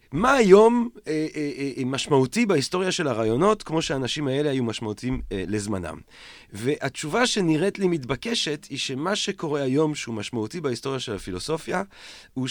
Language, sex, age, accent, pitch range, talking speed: Hebrew, male, 30-49, French, 115-160 Hz, 125 wpm